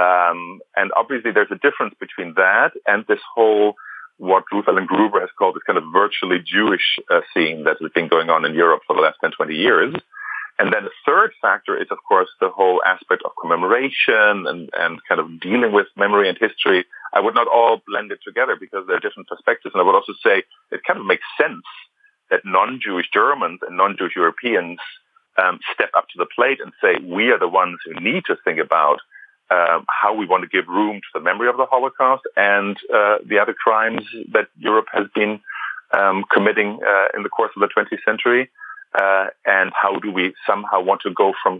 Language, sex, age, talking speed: English, male, 50-69, 210 wpm